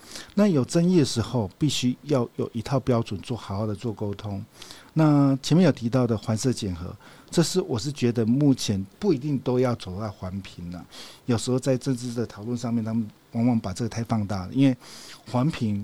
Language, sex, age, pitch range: Chinese, male, 50-69, 110-135 Hz